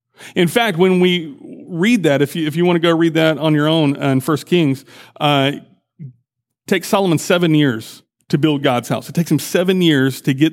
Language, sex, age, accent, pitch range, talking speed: English, male, 40-59, American, 140-185 Hz, 215 wpm